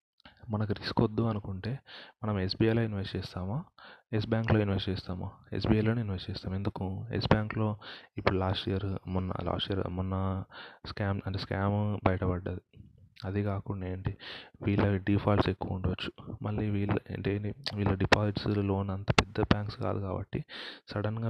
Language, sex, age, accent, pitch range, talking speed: Telugu, male, 30-49, native, 95-110 Hz, 130 wpm